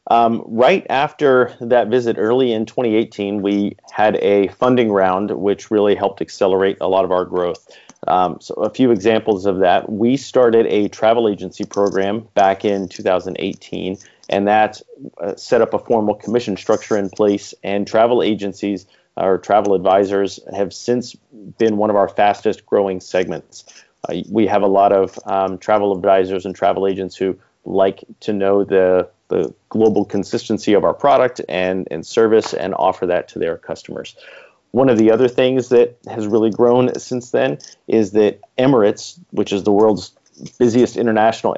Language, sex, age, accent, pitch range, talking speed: English, male, 40-59, American, 95-115 Hz, 165 wpm